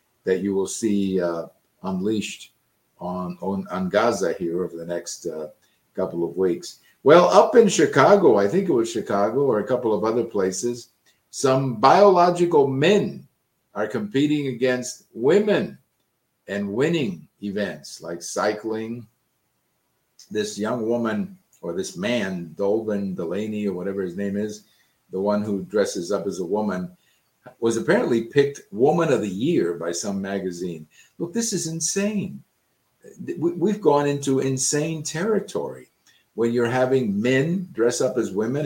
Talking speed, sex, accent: 145 wpm, male, American